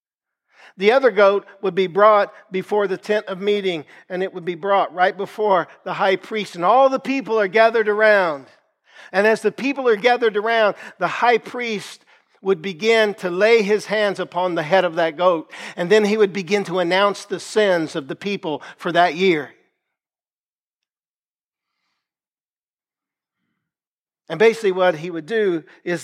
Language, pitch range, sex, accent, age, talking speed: English, 165-215 Hz, male, American, 50-69, 165 wpm